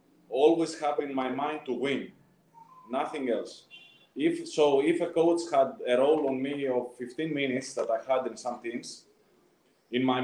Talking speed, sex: 175 wpm, male